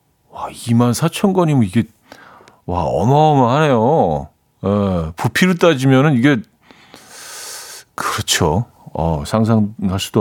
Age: 40-59